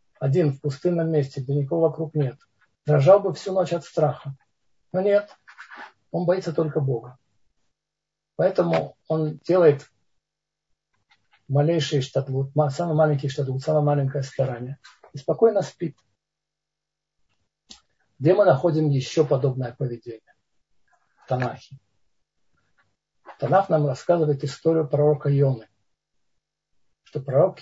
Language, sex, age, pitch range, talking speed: Russian, male, 50-69, 130-155 Hz, 105 wpm